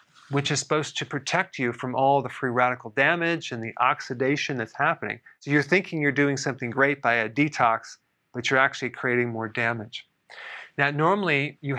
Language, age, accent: English, 40-59, American